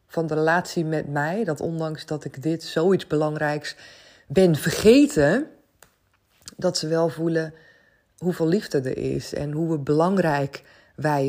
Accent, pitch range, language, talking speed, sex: Dutch, 140-175 Hz, Dutch, 140 wpm, female